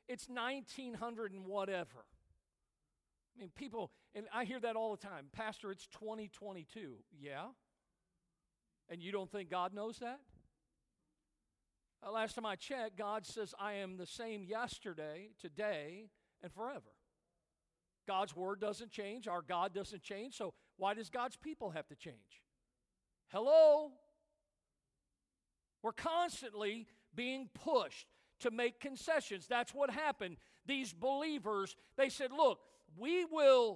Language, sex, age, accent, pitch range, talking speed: English, male, 50-69, American, 200-260 Hz, 130 wpm